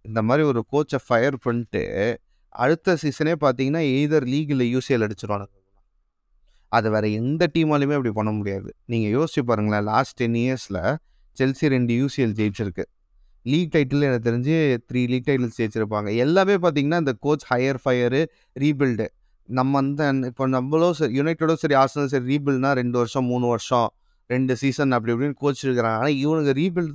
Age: 30-49